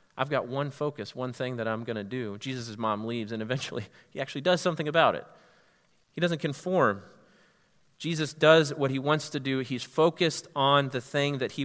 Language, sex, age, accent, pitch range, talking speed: English, male, 30-49, American, 120-155 Hz, 200 wpm